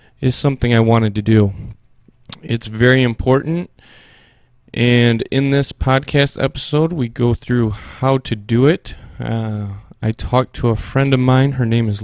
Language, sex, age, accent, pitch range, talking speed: English, male, 20-39, American, 115-135 Hz, 160 wpm